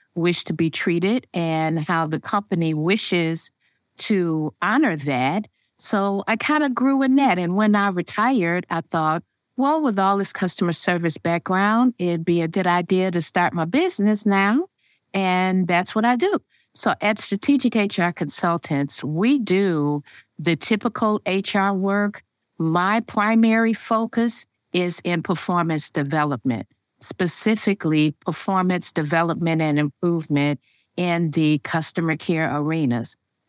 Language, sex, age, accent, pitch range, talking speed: English, female, 50-69, American, 160-220 Hz, 135 wpm